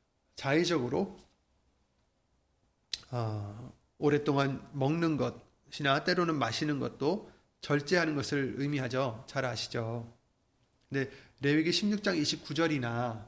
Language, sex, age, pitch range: Korean, male, 30-49, 125-195 Hz